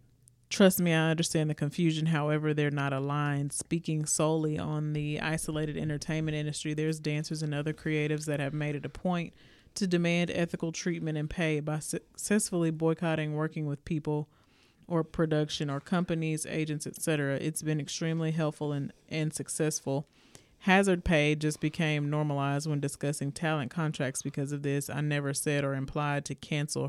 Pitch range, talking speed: 145-160 Hz, 160 wpm